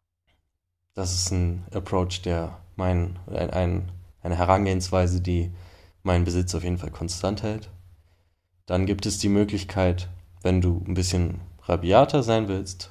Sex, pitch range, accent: male, 90-100 Hz, German